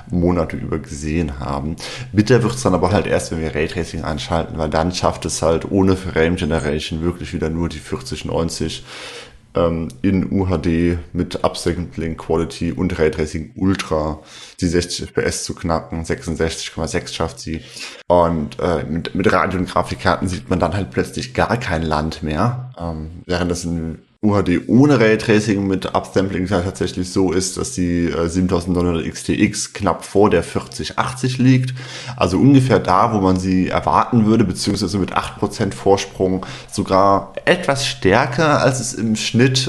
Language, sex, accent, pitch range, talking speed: German, male, German, 80-100 Hz, 160 wpm